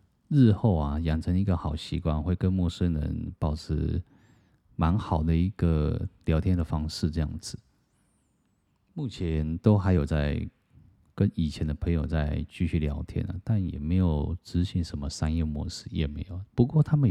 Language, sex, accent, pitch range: Chinese, male, native, 80-100 Hz